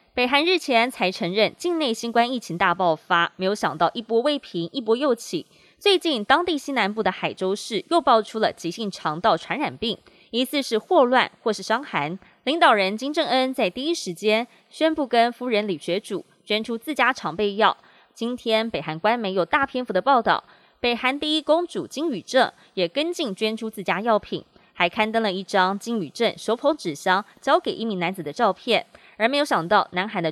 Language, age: Chinese, 20-39